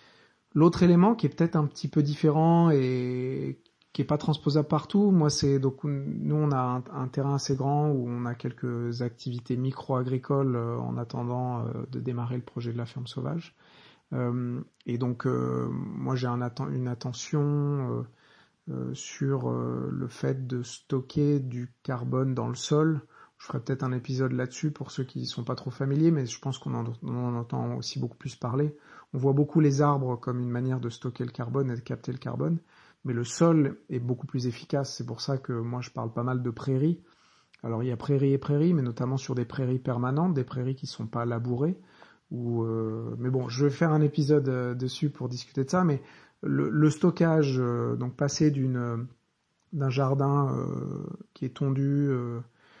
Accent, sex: French, male